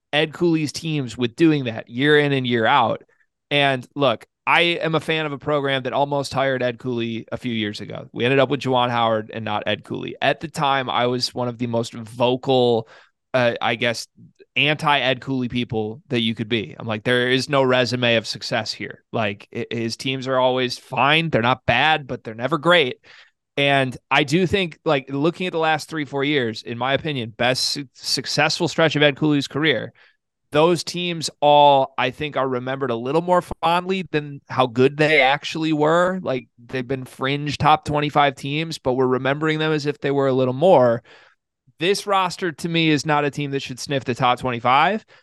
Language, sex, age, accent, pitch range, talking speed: English, male, 30-49, American, 125-160 Hz, 205 wpm